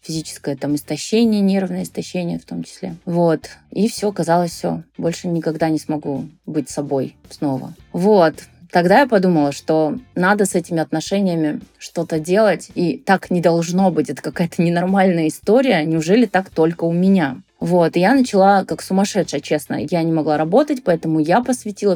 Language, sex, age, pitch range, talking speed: Russian, female, 20-39, 150-190 Hz, 160 wpm